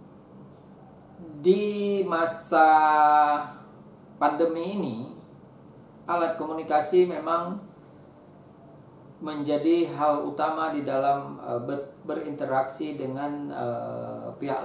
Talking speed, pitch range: 60 wpm, 130-165 Hz